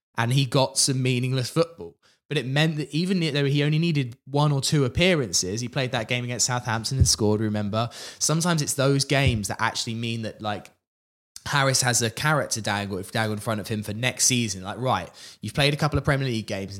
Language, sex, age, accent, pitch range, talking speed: English, male, 20-39, British, 100-135 Hz, 210 wpm